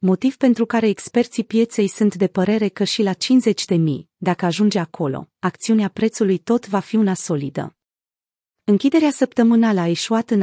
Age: 30-49